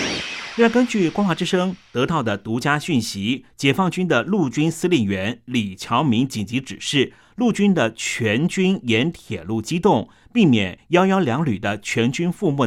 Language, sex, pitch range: Chinese, male, 110-165 Hz